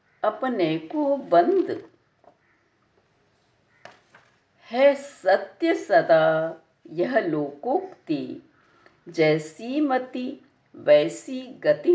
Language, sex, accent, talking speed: Hindi, female, native, 60 wpm